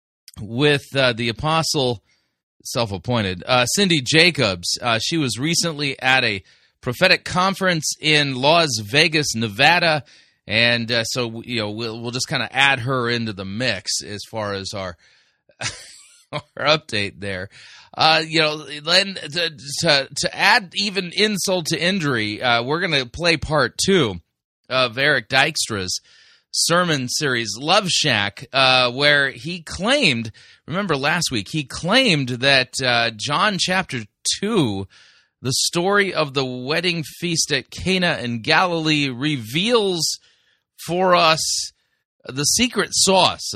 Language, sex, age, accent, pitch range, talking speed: English, male, 30-49, American, 110-160 Hz, 135 wpm